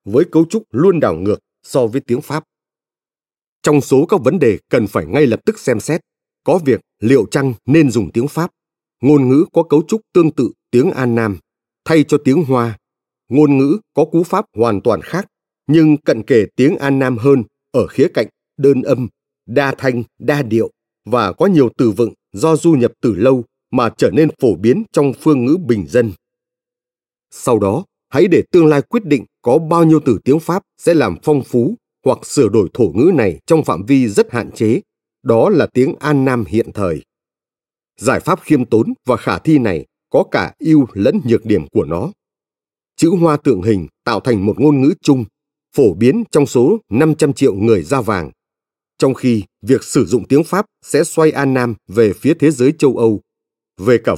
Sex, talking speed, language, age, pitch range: male, 200 wpm, Vietnamese, 30-49, 120-160 Hz